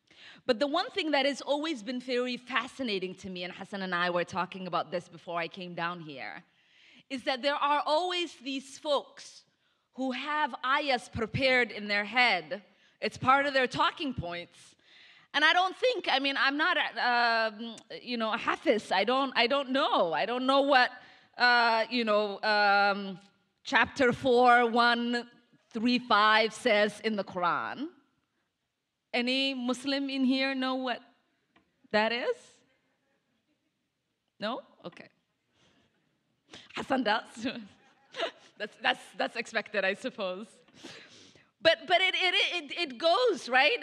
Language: English